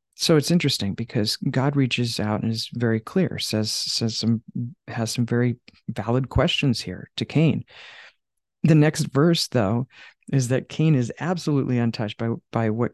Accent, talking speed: American, 160 wpm